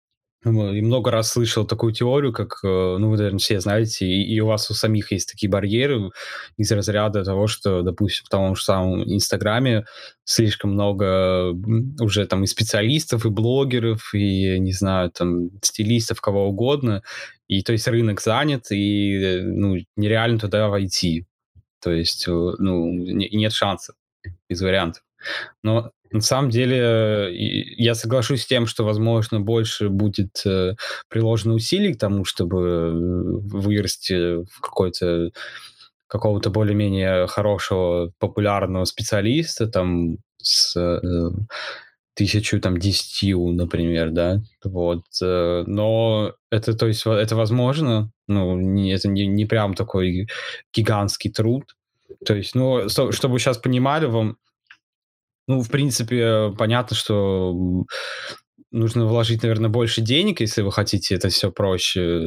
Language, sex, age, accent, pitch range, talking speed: Russian, male, 20-39, native, 95-115 Hz, 130 wpm